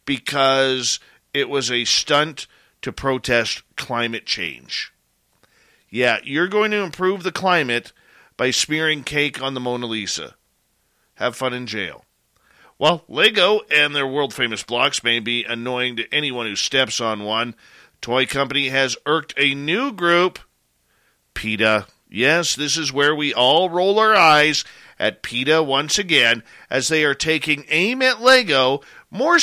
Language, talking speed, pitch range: English, 145 wpm, 120-155 Hz